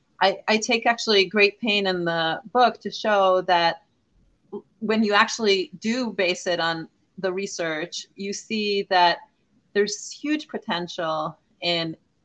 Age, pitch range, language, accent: 30-49, 160-205 Hz, English, American